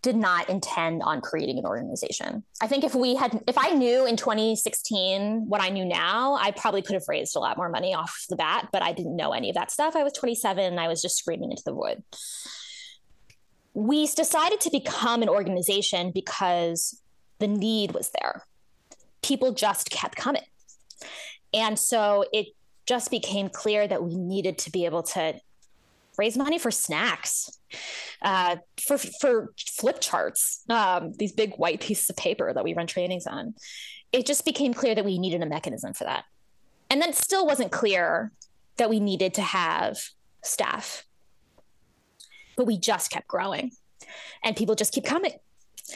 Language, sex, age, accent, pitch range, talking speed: English, female, 20-39, American, 190-265 Hz, 175 wpm